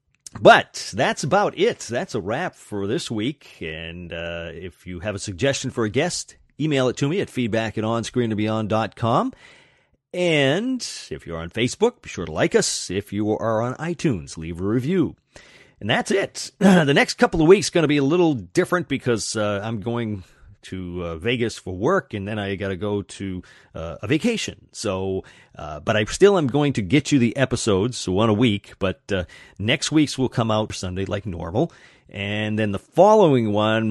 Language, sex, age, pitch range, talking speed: English, male, 40-59, 100-135 Hz, 195 wpm